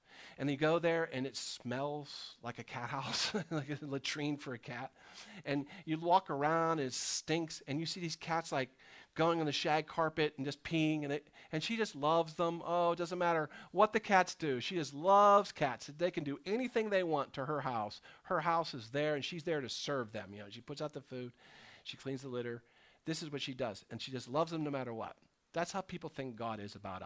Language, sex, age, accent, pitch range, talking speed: English, male, 40-59, American, 125-165 Hz, 235 wpm